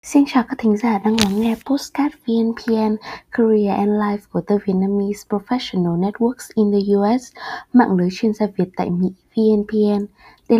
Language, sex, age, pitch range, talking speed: Vietnamese, female, 20-39, 180-230 Hz, 170 wpm